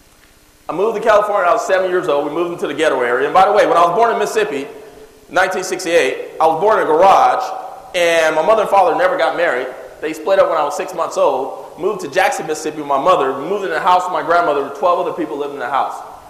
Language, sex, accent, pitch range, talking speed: English, male, American, 155-220 Hz, 265 wpm